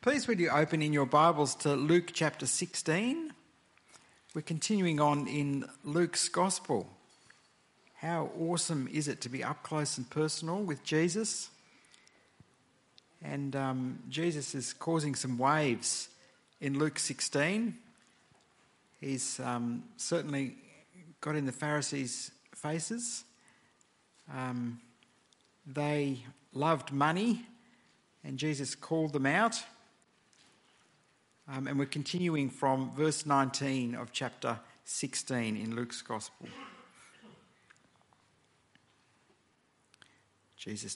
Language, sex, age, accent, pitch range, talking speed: English, male, 50-69, Australian, 130-170 Hz, 105 wpm